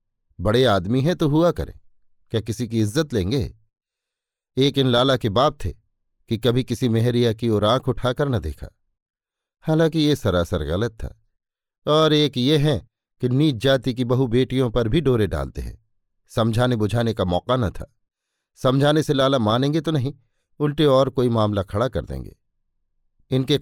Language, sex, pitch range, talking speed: Hindi, male, 100-130 Hz, 170 wpm